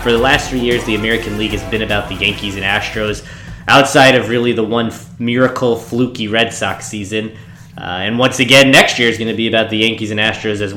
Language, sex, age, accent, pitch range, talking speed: English, male, 20-39, American, 110-130 Hz, 235 wpm